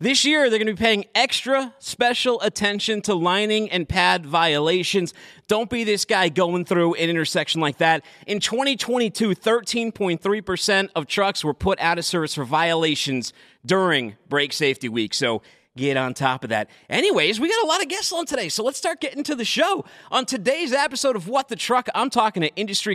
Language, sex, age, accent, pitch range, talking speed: English, male, 30-49, American, 150-235 Hz, 195 wpm